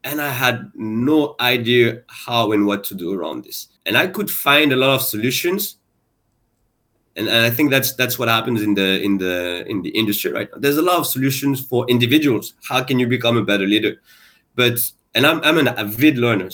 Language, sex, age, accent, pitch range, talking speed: English, male, 30-49, French, 110-135 Hz, 205 wpm